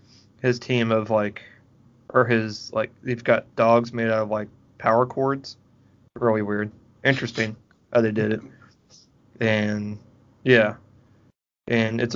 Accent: American